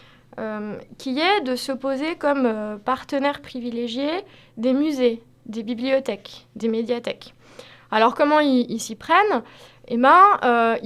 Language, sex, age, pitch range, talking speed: French, female, 20-39, 225-285 Hz, 140 wpm